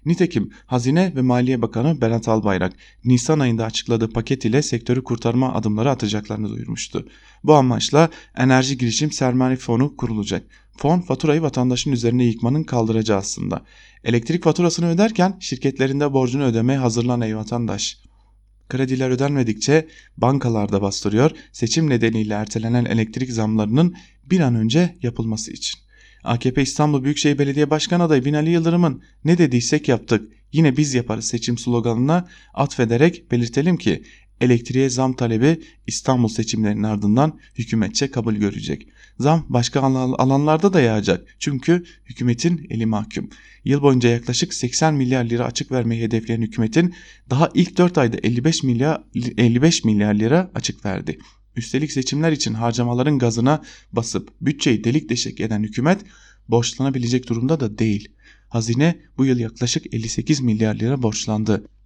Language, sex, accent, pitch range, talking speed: German, male, Turkish, 115-150 Hz, 130 wpm